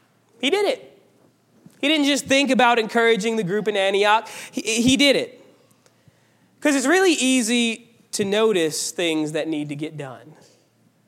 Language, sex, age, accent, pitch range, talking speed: English, male, 20-39, American, 155-255 Hz, 155 wpm